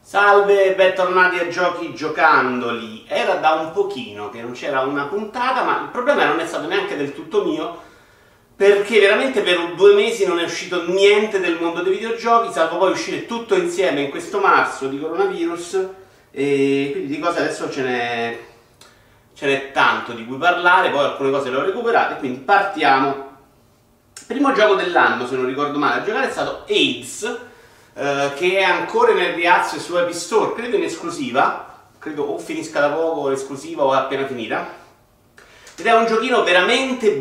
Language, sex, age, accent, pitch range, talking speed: Italian, male, 40-59, native, 135-205 Hz, 170 wpm